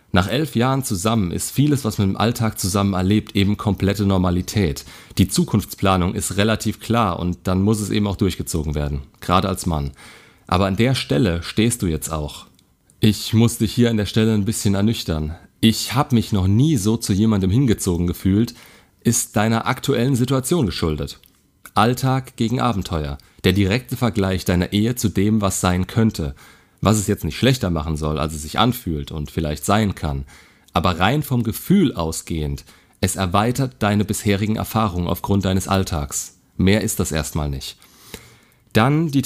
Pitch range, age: 90-115 Hz, 40-59